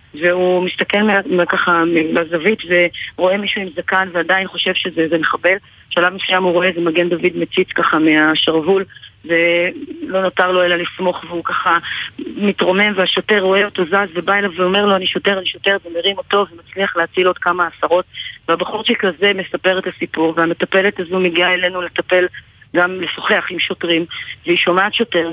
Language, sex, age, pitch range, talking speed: Hebrew, female, 30-49, 170-190 Hz, 160 wpm